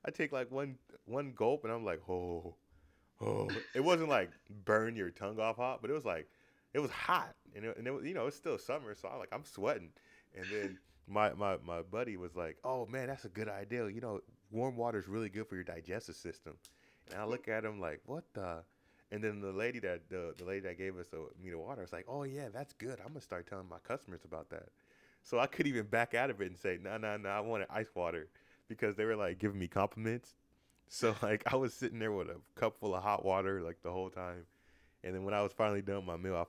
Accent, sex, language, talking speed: American, male, English, 255 wpm